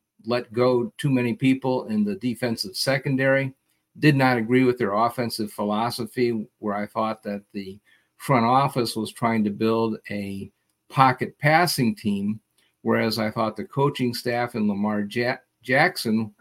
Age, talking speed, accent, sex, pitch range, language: 50-69, 145 wpm, American, male, 110-130 Hz, English